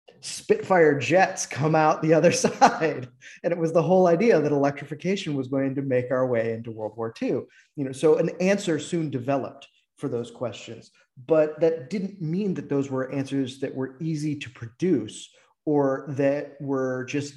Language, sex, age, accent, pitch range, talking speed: English, male, 30-49, American, 125-160 Hz, 180 wpm